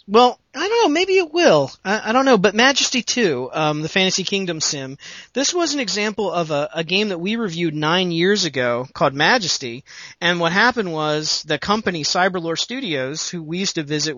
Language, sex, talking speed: English, male, 205 wpm